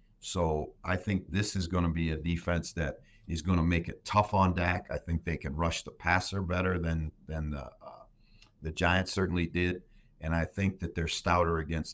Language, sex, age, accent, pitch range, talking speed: English, male, 50-69, American, 80-95 Hz, 200 wpm